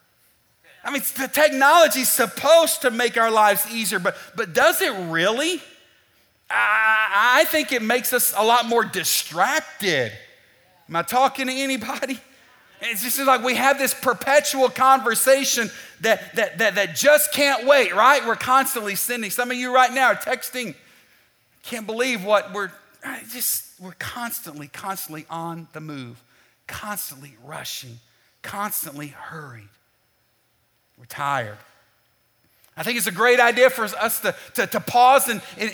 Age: 40-59